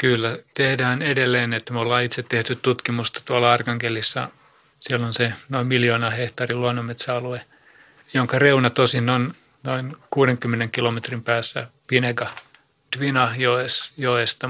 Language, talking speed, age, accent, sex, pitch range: Finnish, 115 wpm, 30-49, native, male, 120-135 Hz